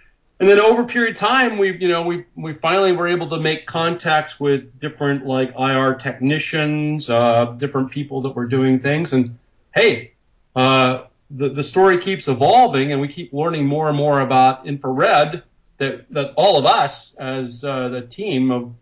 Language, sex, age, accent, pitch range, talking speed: English, male, 40-59, American, 125-155 Hz, 180 wpm